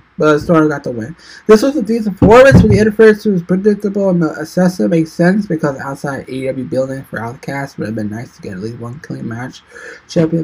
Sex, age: male, 20-39